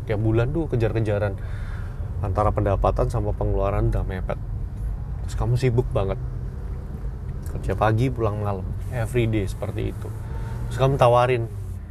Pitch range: 100-120 Hz